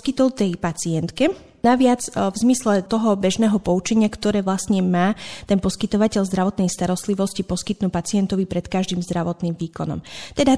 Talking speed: 130 wpm